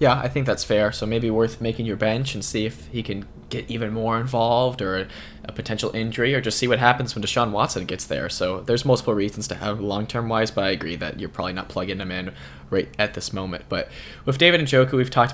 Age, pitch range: 10-29, 100-120 Hz